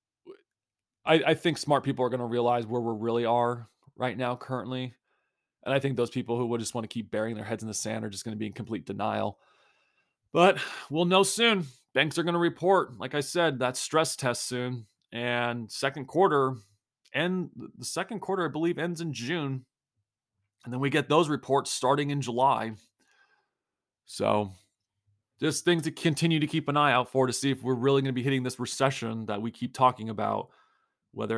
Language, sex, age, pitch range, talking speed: English, male, 30-49, 115-145 Hz, 205 wpm